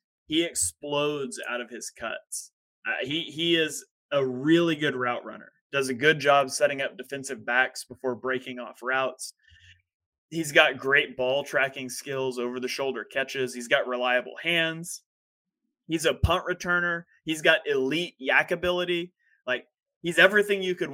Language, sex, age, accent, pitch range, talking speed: English, male, 20-39, American, 130-165 Hz, 150 wpm